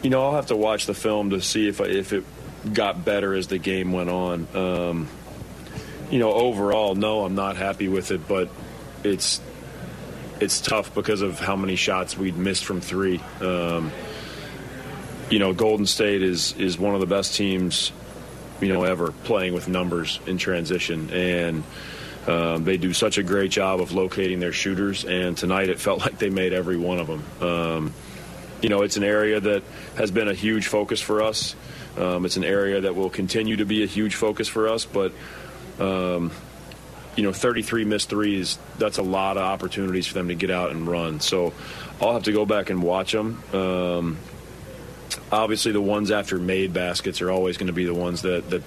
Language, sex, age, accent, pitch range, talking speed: English, male, 40-59, American, 90-100 Hz, 195 wpm